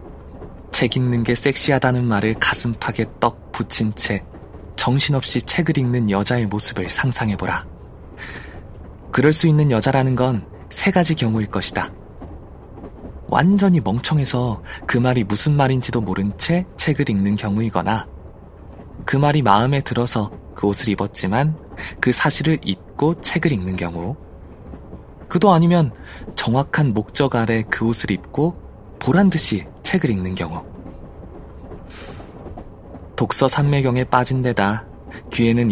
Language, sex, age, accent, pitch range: Korean, male, 20-39, native, 90-130 Hz